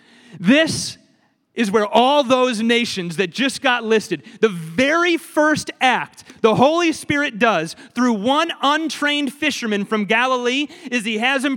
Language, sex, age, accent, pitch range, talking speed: English, male, 30-49, American, 225-280 Hz, 145 wpm